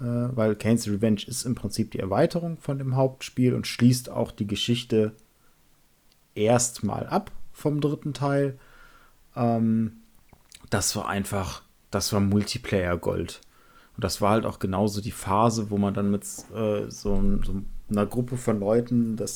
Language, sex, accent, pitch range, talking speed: German, male, German, 105-120 Hz, 145 wpm